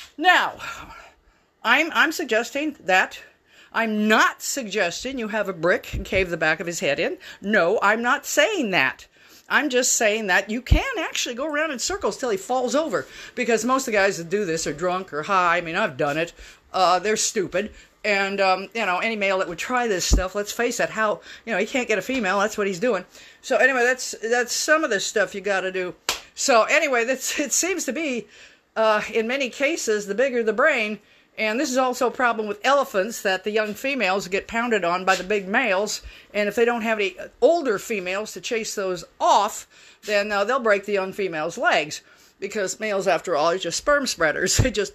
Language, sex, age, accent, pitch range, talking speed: English, female, 50-69, American, 190-255 Hz, 215 wpm